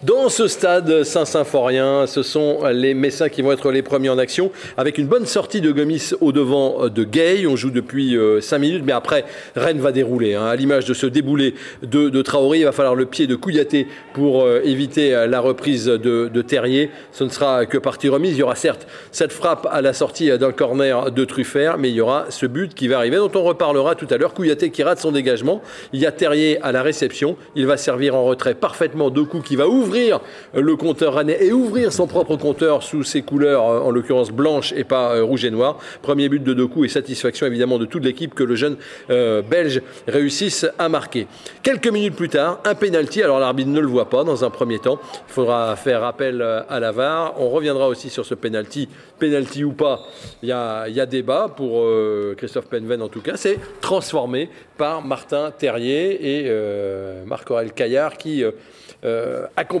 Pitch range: 125-155 Hz